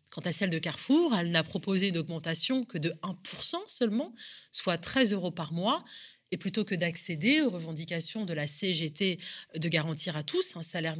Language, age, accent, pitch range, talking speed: French, 30-49, French, 165-220 Hz, 185 wpm